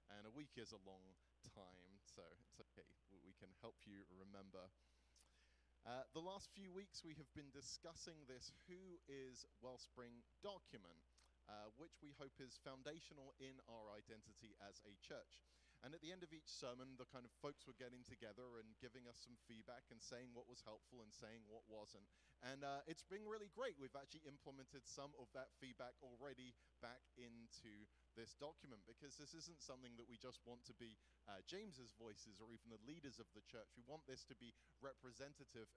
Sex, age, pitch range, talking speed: male, 30-49, 105-140 Hz, 190 wpm